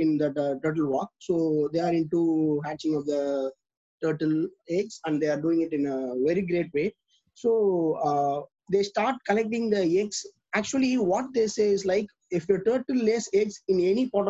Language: English